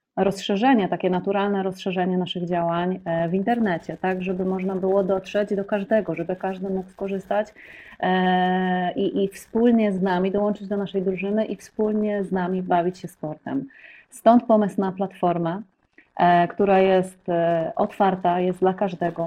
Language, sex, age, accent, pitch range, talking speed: Polish, female, 30-49, native, 175-200 Hz, 140 wpm